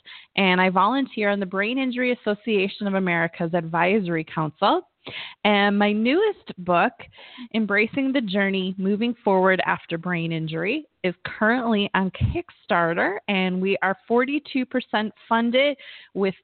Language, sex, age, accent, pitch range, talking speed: English, female, 20-39, American, 185-230 Hz, 125 wpm